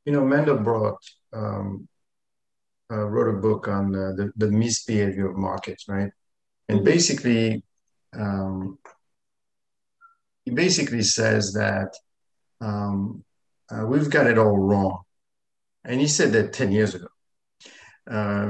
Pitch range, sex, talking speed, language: 100-125 Hz, male, 125 wpm, English